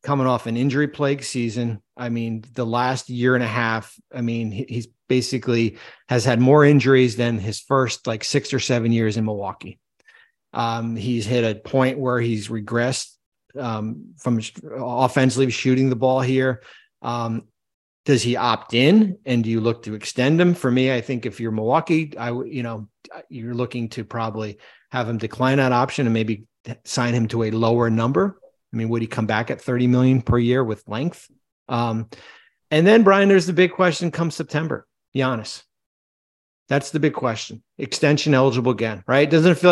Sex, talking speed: male, 180 wpm